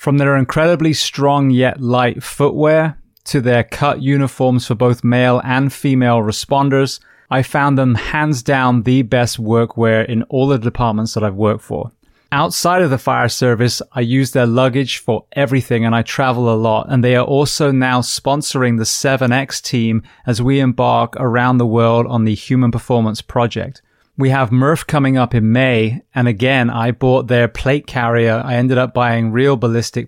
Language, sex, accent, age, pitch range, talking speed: English, male, British, 20-39, 115-135 Hz, 180 wpm